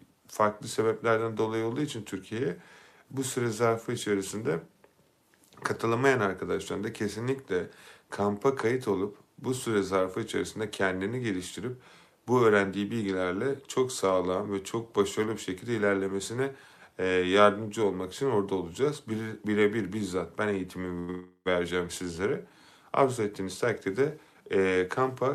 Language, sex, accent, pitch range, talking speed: Turkish, male, native, 95-120 Hz, 115 wpm